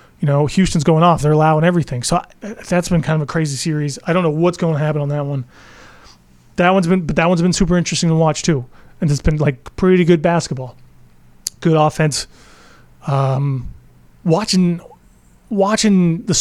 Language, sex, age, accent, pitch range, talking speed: English, male, 30-49, American, 140-175 Hz, 190 wpm